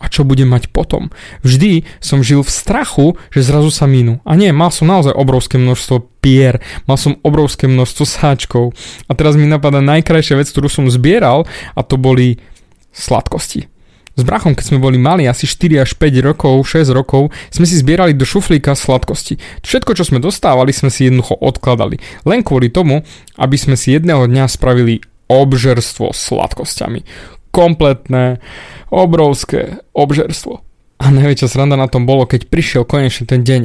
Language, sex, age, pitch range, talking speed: Slovak, male, 20-39, 125-150 Hz, 160 wpm